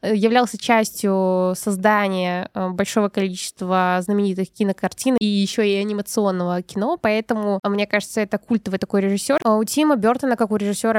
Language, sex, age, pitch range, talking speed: Russian, female, 20-39, 200-225 Hz, 135 wpm